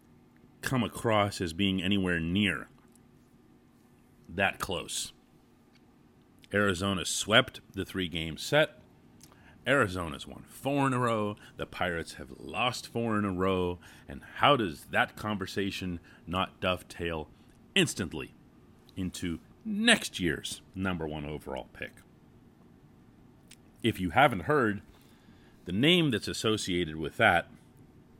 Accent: American